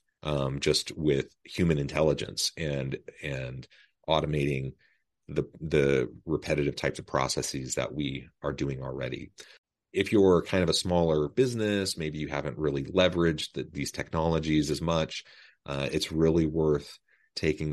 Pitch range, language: 65-75 Hz, English